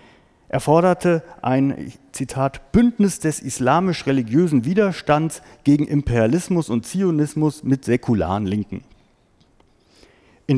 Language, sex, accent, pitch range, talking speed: German, male, German, 115-160 Hz, 90 wpm